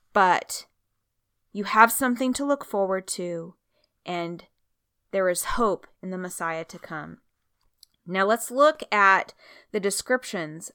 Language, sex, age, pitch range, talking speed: English, female, 30-49, 175-225 Hz, 130 wpm